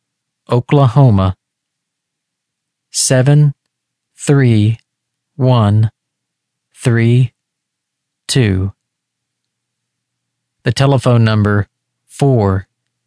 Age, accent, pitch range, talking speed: 40-59, American, 110-130 Hz, 45 wpm